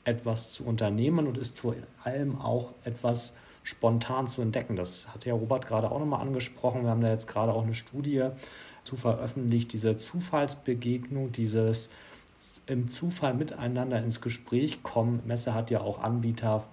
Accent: German